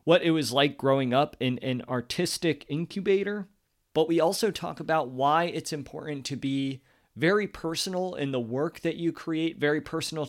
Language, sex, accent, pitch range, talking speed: English, male, American, 125-165 Hz, 175 wpm